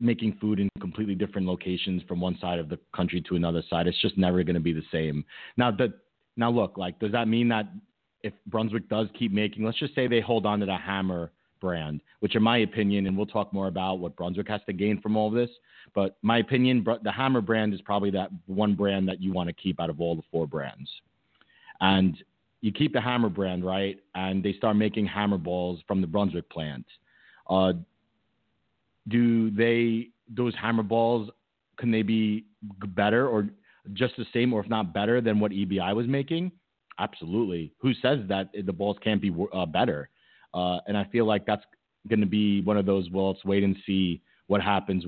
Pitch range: 90-110 Hz